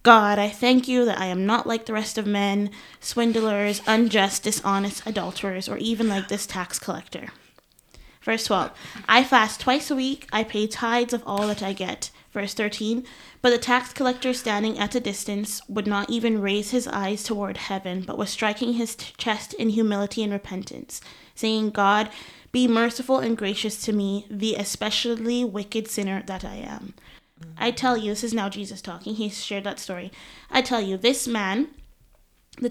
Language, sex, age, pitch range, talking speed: English, female, 20-39, 200-235 Hz, 180 wpm